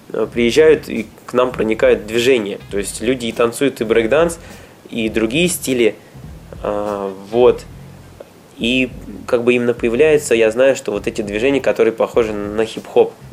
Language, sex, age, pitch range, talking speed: Russian, male, 20-39, 105-125 Hz, 145 wpm